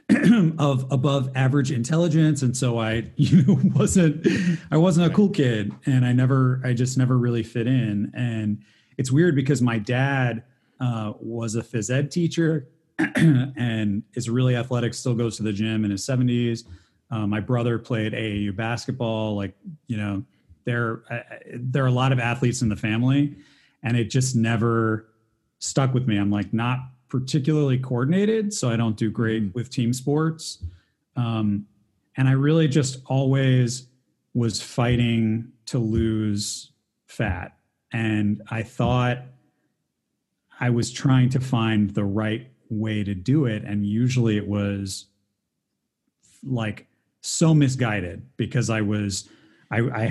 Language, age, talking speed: English, 30-49, 145 wpm